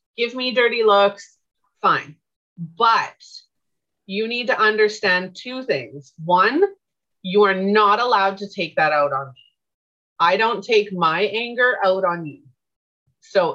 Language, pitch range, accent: English, 175-255 Hz, American